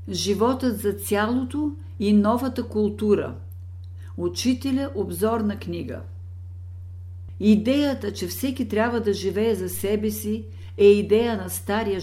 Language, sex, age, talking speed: Bulgarian, female, 50-69, 110 wpm